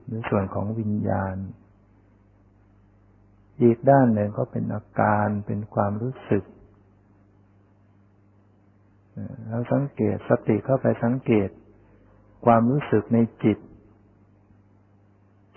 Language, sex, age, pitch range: Thai, male, 60-79, 100-115 Hz